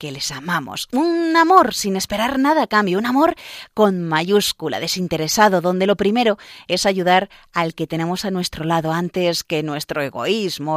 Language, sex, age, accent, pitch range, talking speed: Spanish, female, 30-49, Spanish, 165-215 Hz, 165 wpm